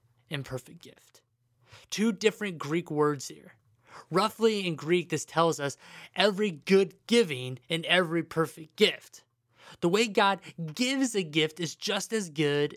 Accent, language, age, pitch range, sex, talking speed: American, English, 20-39, 140-190 Hz, male, 140 wpm